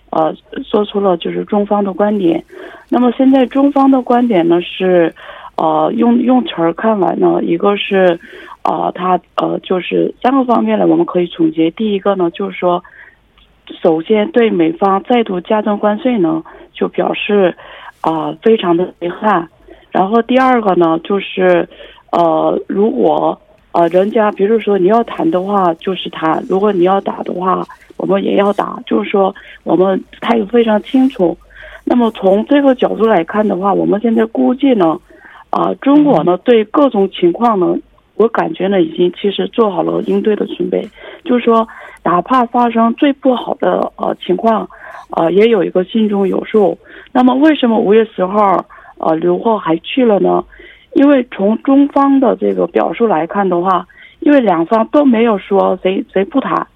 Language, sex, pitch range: Korean, female, 180-240 Hz